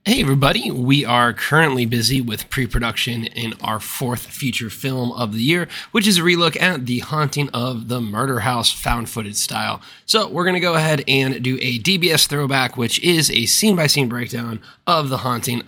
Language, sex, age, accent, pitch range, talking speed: English, male, 20-39, American, 120-165 Hz, 195 wpm